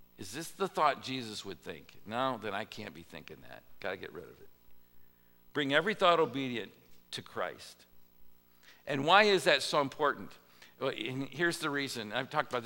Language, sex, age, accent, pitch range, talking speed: English, male, 50-69, American, 95-150 Hz, 180 wpm